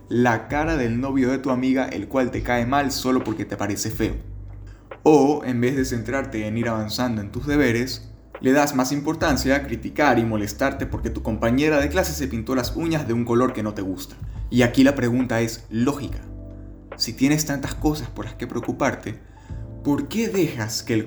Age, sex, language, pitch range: 20-39, male, Spanish, 105-130 Hz